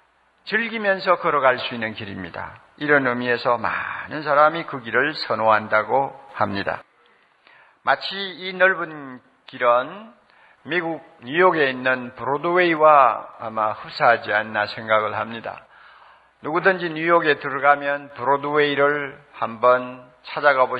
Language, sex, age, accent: Korean, male, 50-69, native